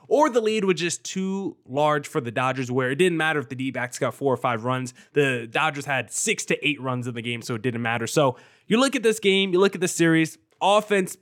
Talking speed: 255 wpm